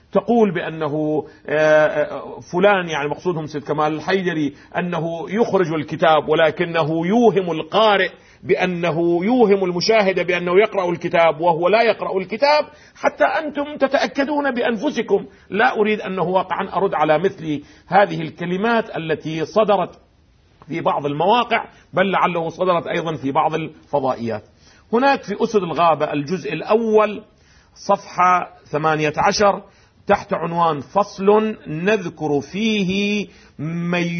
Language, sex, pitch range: Arabic, male, 155-210 Hz